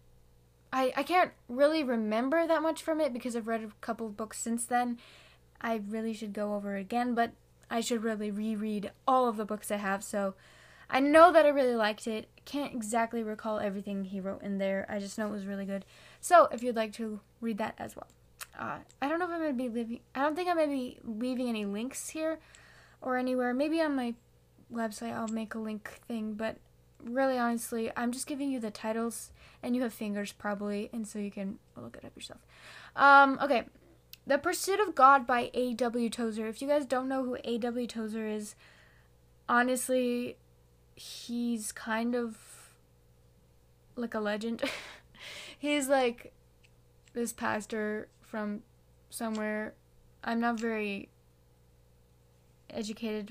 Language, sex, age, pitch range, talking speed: English, female, 10-29, 205-250 Hz, 175 wpm